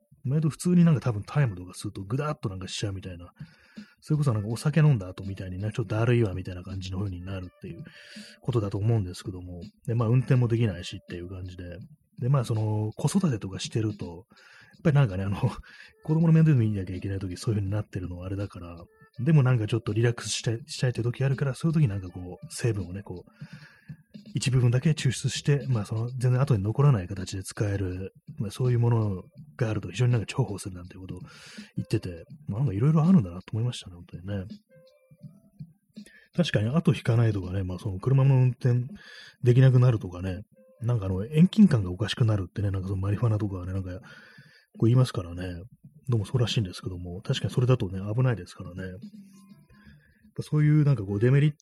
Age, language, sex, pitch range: 30-49, Japanese, male, 95-145 Hz